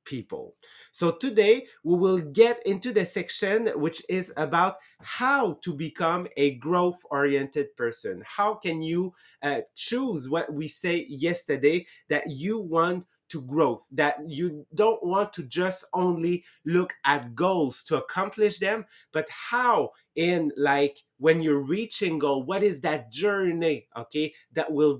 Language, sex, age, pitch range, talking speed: English, male, 30-49, 145-195 Hz, 145 wpm